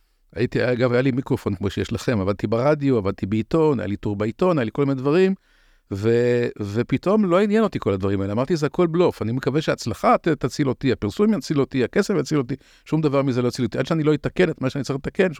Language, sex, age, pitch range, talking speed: Hebrew, male, 50-69, 110-160 Hz, 205 wpm